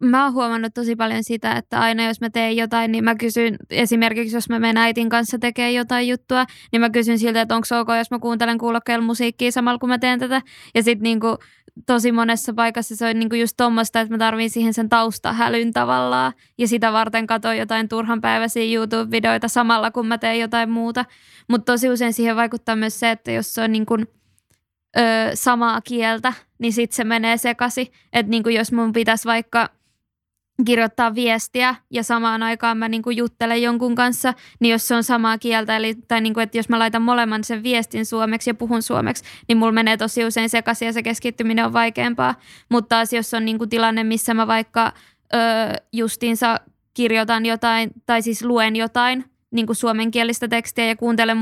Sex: female